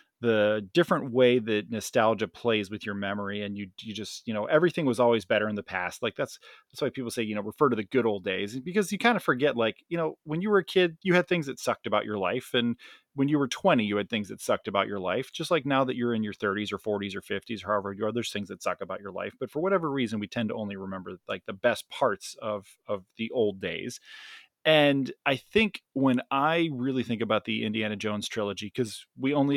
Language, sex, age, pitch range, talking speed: English, male, 30-49, 105-130 Hz, 255 wpm